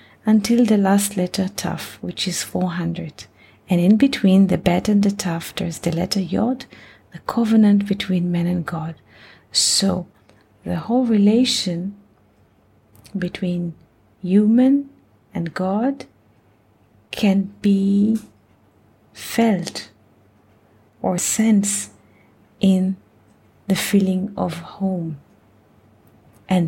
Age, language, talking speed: 30-49, English, 100 wpm